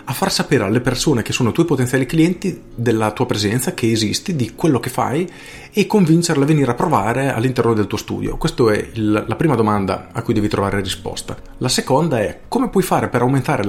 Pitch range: 115-150 Hz